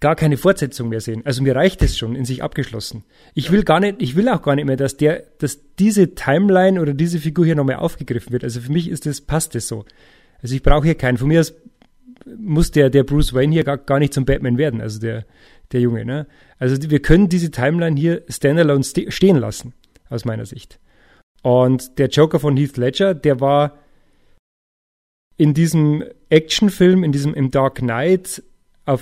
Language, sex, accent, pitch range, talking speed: German, male, German, 130-165 Hz, 200 wpm